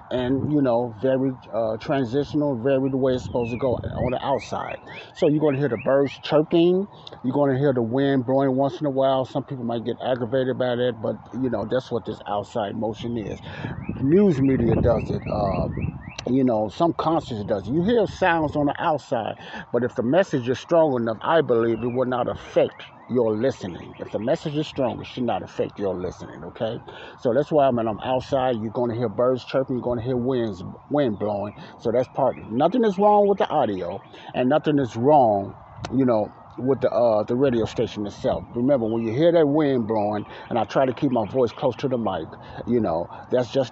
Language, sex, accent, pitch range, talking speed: English, male, American, 115-135 Hz, 215 wpm